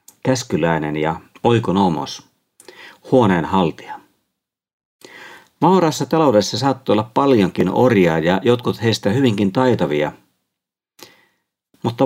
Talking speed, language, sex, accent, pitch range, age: 80 wpm, Finnish, male, native, 85-135 Hz, 50-69